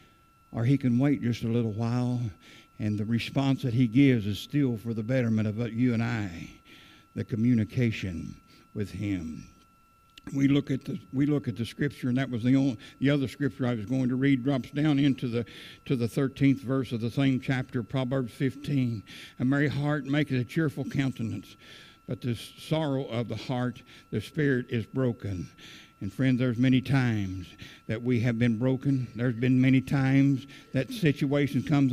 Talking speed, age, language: 180 wpm, 60-79, English